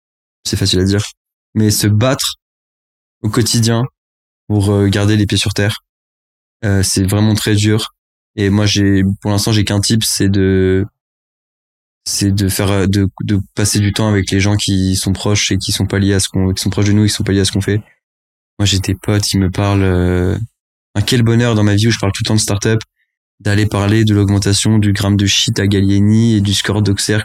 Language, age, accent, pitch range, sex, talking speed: French, 20-39, French, 95-105 Hz, male, 220 wpm